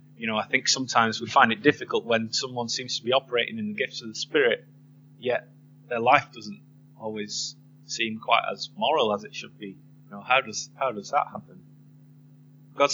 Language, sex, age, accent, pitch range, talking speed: English, male, 20-39, British, 125-145 Hz, 200 wpm